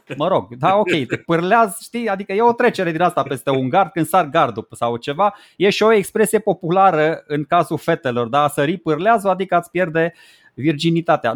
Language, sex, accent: Romanian, male, native